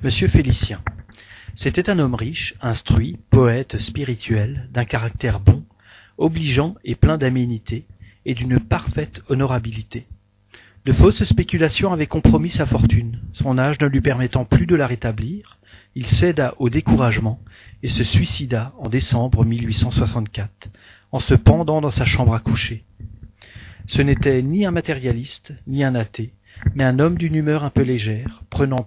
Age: 40-59